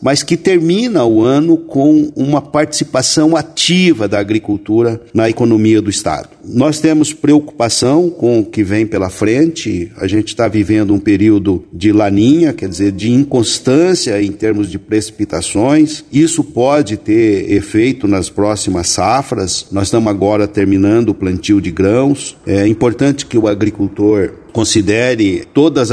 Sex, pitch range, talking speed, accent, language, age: male, 105-145 Hz, 145 wpm, Brazilian, Portuguese, 50-69